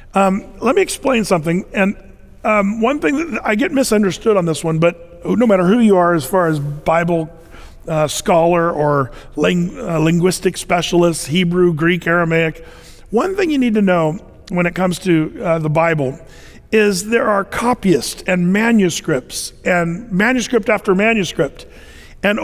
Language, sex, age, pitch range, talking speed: English, male, 50-69, 170-200 Hz, 160 wpm